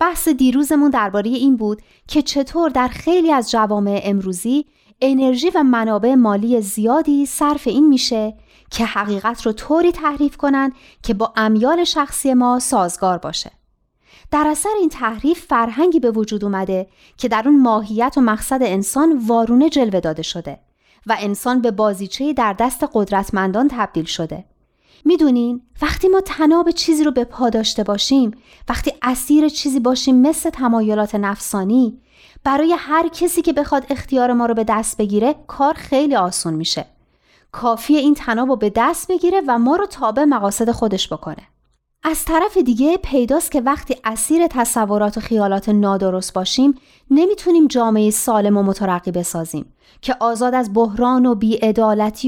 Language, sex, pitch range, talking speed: Persian, female, 215-295 Hz, 150 wpm